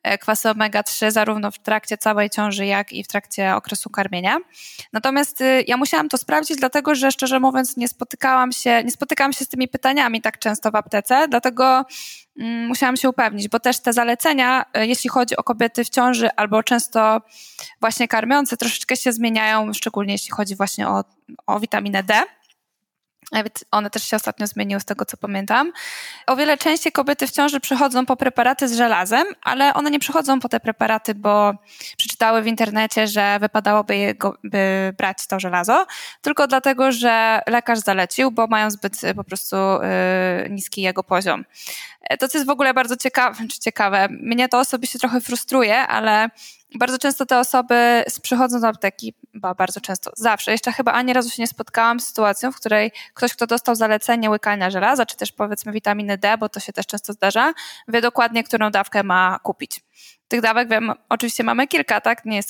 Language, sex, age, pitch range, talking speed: Polish, female, 10-29, 210-255 Hz, 175 wpm